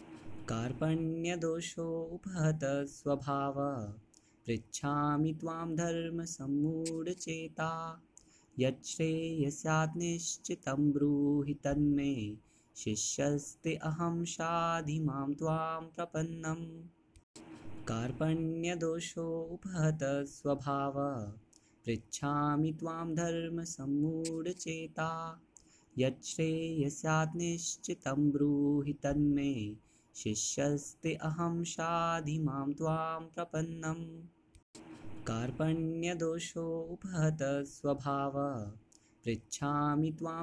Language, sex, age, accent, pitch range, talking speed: Hindi, male, 20-39, native, 140-165 Hz, 35 wpm